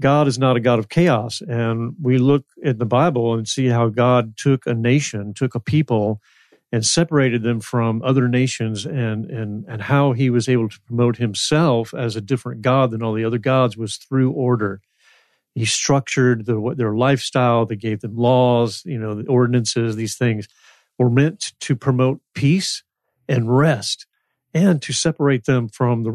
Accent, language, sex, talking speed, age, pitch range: American, English, male, 180 wpm, 50-69, 115-135 Hz